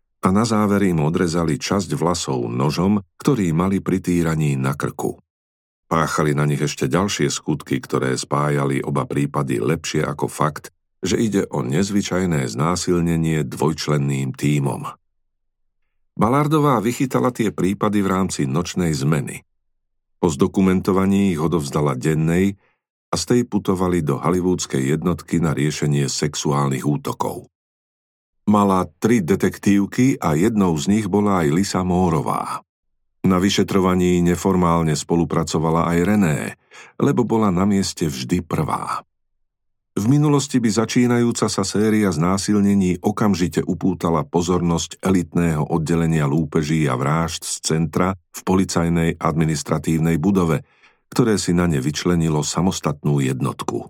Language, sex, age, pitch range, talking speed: Slovak, male, 50-69, 80-100 Hz, 120 wpm